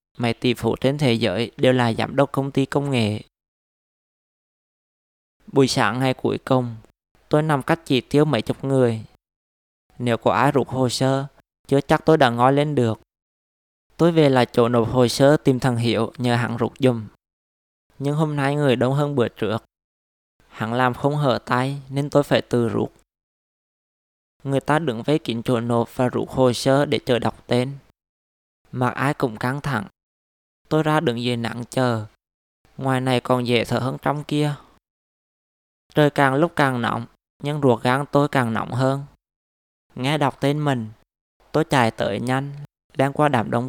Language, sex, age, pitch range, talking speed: Vietnamese, male, 20-39, 115-140 Hz, 180 wpm